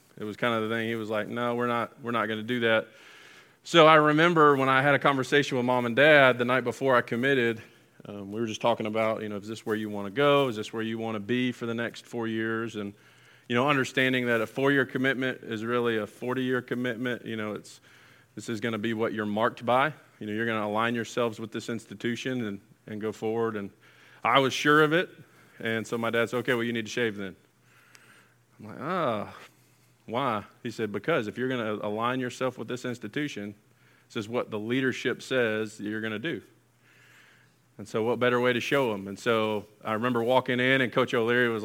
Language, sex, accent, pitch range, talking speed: English, male, American, 110-130 Hz, 235 wpm